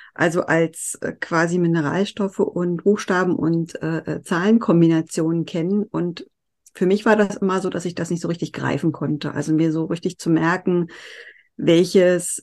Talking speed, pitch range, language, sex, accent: 155 wpm, 170-215 Hz, German, female, German